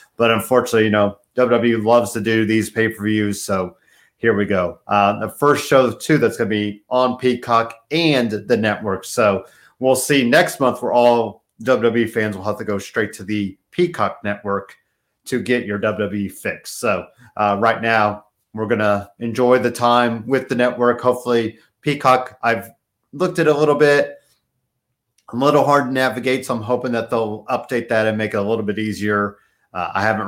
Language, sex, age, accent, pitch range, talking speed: English, male, 40-59, American, 105-125 Hz, 190 wpm